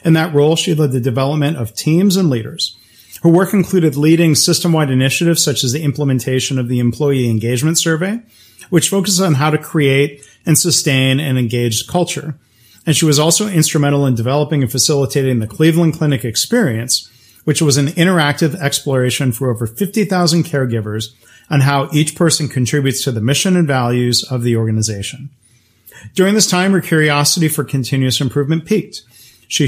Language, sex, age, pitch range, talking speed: English, male, 40-59, 125-160 Hz, 165 wpm